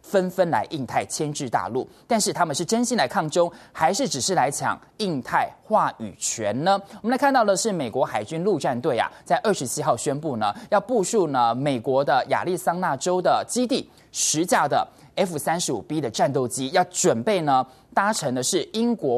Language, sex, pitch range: Chinese, male, 140-195 Hz